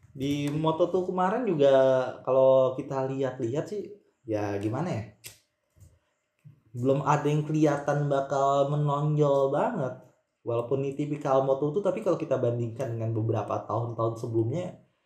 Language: Indonesian